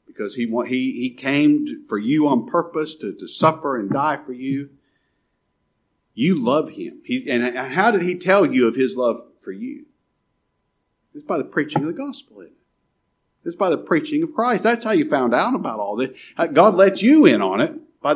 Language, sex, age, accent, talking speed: English, male, 50-69, American, 180 wpm